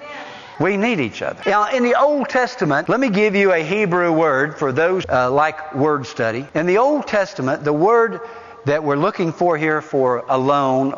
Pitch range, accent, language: 140-200 Hz, American, English